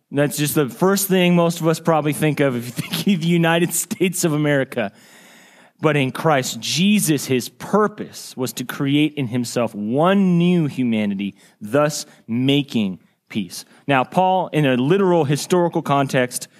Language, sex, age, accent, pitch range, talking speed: English, male, 30-49, American, 130-175 Hz, 160 wpm